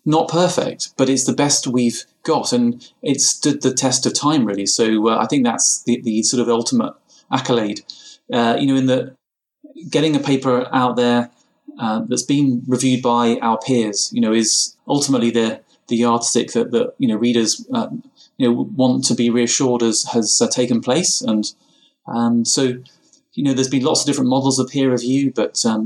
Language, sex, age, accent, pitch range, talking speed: English, male, 30-49, British, 115-135 Hz, 195 wpm